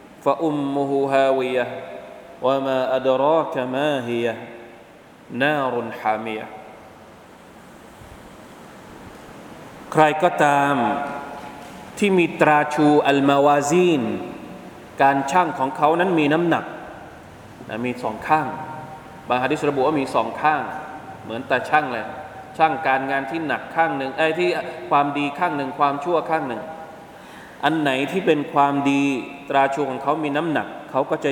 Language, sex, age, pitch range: Thai, male, 20-39, 125-155 Hz